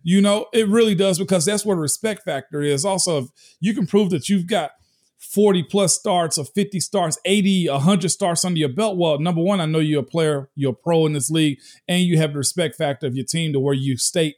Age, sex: 40-59, male